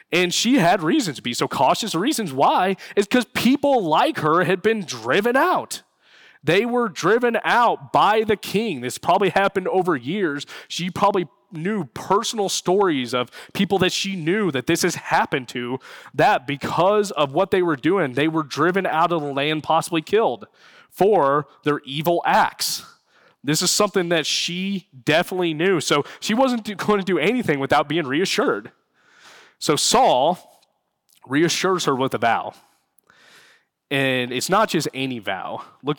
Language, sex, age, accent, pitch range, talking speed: English, male, 20-39, American, 140-195 Hz, 165 wpm